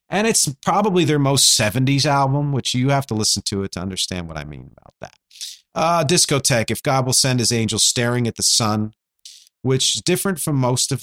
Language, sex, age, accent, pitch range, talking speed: English, male, 50-69, American, 110-140 Hz, 210 wpm